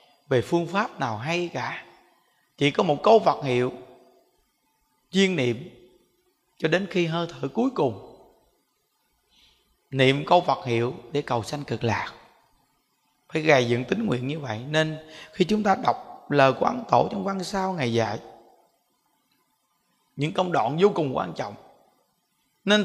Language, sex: Vietnamese, male